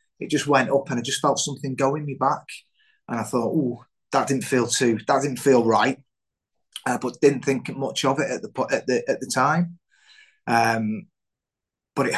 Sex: male